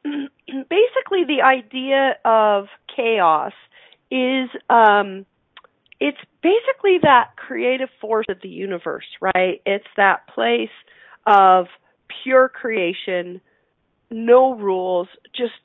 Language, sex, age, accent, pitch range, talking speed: English, female, 40-59, American, 200-255 Hz, 95 wpm